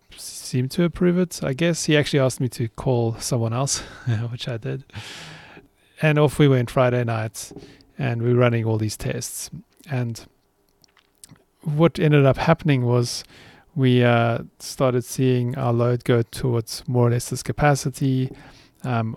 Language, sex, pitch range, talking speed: English, male, 120-140 Hz, 155 wpm